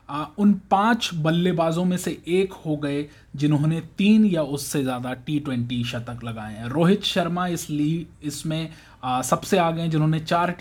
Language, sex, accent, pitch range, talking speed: Hindi, male, native, 140-185 Hz, 155 wpm